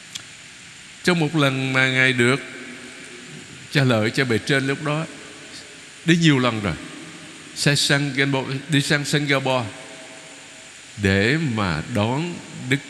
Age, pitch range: 60-79, 115-155 Hz